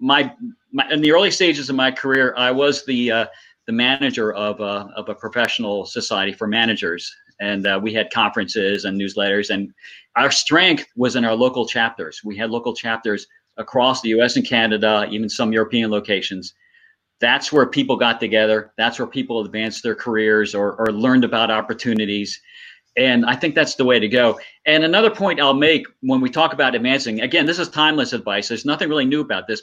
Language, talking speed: English, 195 wpm